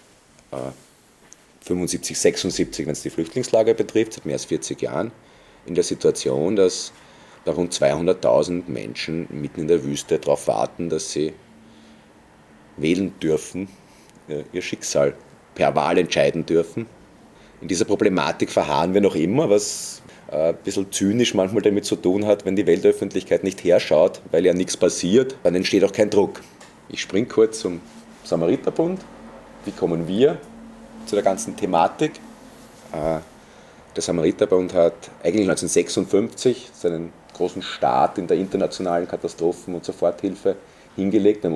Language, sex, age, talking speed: German, male, 30-49, 135 wpm